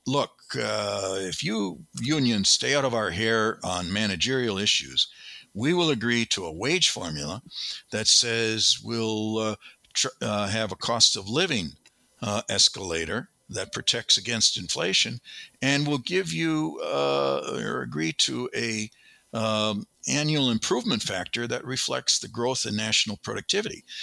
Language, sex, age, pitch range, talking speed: English, male, 60-79, 100-120 Hz, 140 wpm